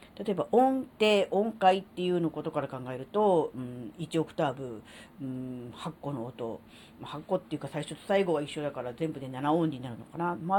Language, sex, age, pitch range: Japanese, female, 40-59, 135-195 Hz